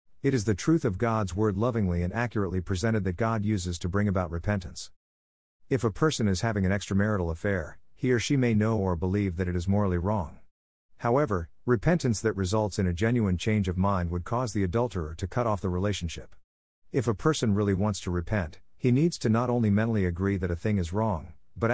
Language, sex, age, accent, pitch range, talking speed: English, male, 50-69, American, 90-120 Hz, 215 wpm